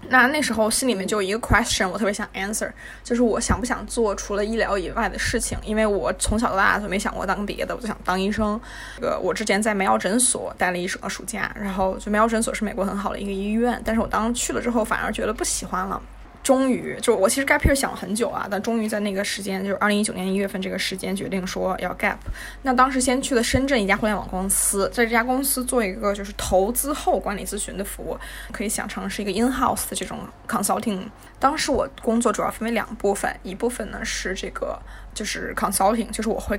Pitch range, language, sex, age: 195-235 Hz, Chinese, female, 20-39